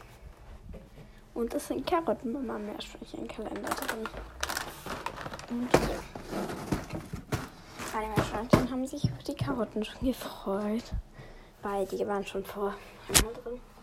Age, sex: 20-39, female